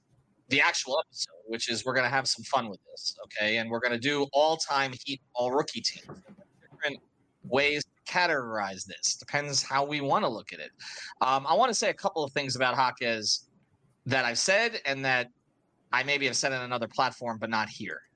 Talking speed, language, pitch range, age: 210 wpm, English, 130-165 Hz, 30-49